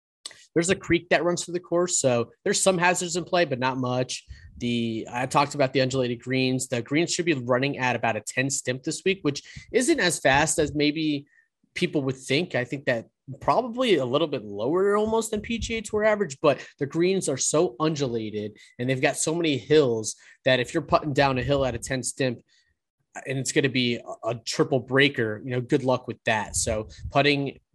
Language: English